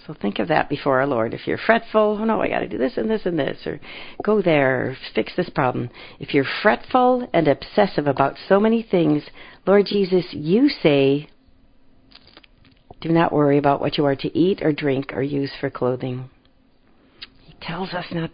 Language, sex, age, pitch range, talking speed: English, female, 50-69, 140-175 Hz, 195 wpm